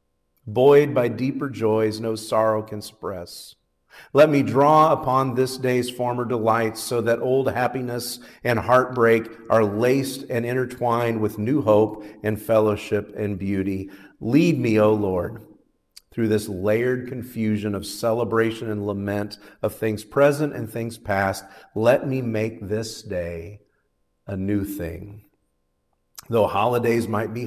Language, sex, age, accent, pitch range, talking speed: English, male, 50-69, American, 105-125 Hz, 140 wpm